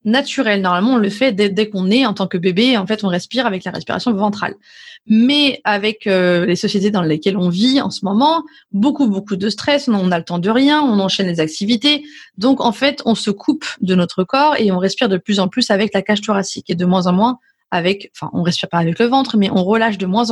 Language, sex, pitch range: French, female, 195-255 Hz